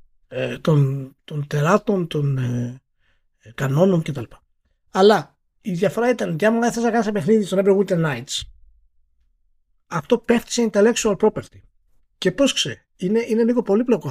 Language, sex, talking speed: Greek, male, 150 wpm